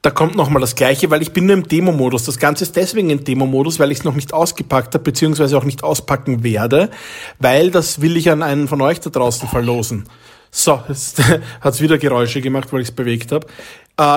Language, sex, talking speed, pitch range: German, male, 235 wpm, 140-180 Hz